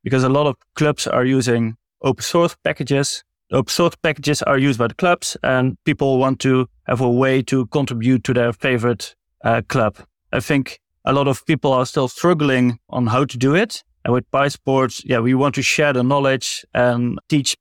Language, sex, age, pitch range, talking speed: English, male, 30-49, 125-140 Hz, 200 wpm